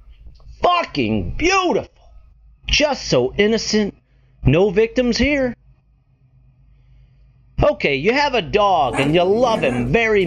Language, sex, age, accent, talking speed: English, male, 40-59, American, 105 wpm